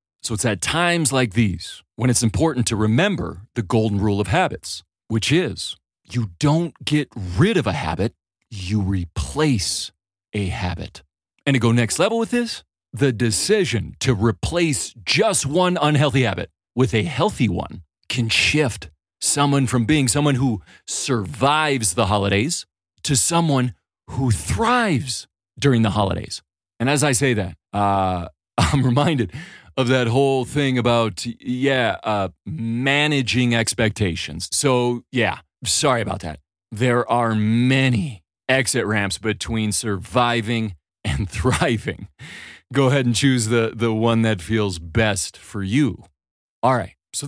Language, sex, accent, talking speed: English, male, American, 140 wpm